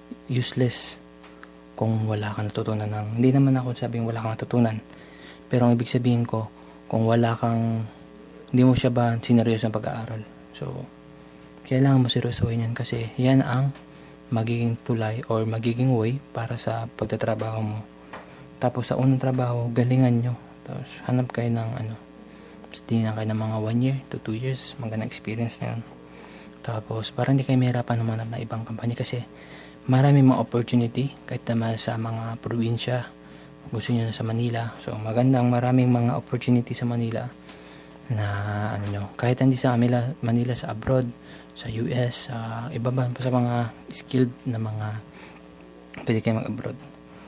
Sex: male